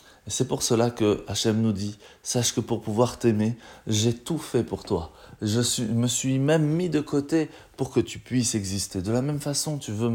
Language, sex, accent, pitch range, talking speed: French, male, French, 110-155 Hz, 205 wpm